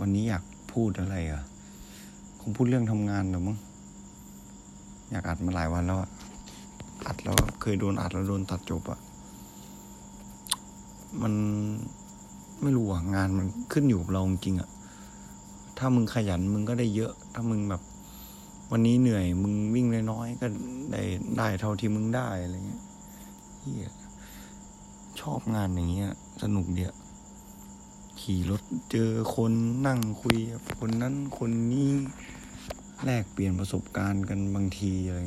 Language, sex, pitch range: Thai, male, 90-115 Hz